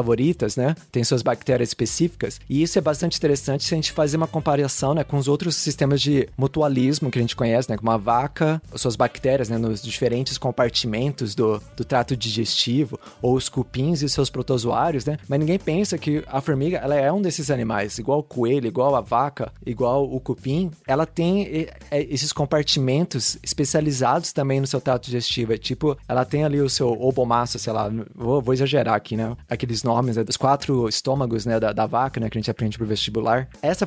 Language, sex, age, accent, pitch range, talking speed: Portuguese, male, 20-39, Brazilian, 120-155 Hz, 195 wpm